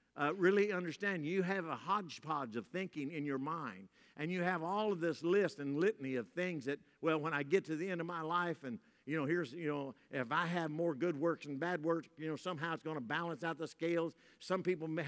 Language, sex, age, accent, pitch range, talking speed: English, male, 50-69, American, 145-190 Hz, 245 wpm